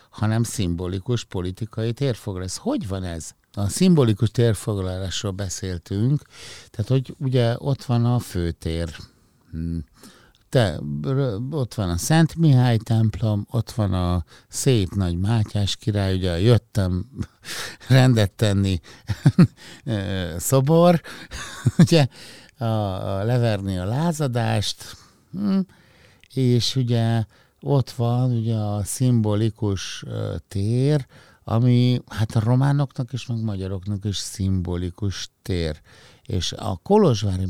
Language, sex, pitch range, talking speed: Hungarian, male, 95-125 Hz, 100 wpm